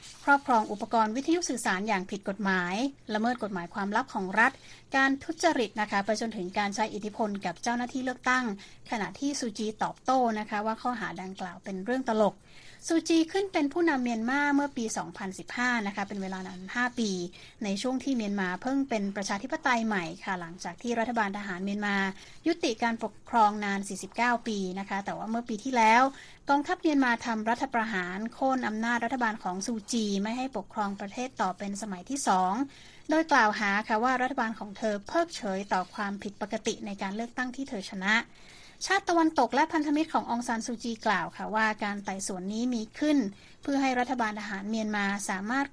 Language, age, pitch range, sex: Thai, 20-39, 200-255 Hz, female